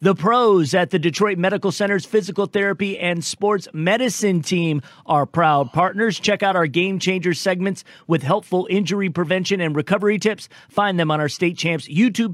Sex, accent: male, American